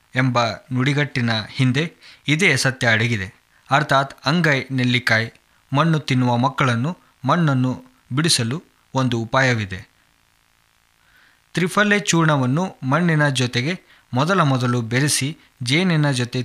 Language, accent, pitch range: Kannada, native, 120-145 Hz